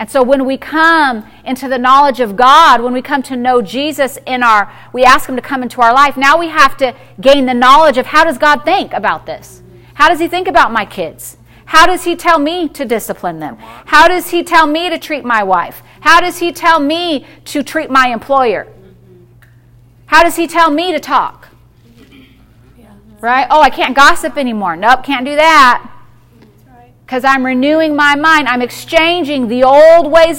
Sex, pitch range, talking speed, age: female, 230-315 Hz, 195 wpm, 40-59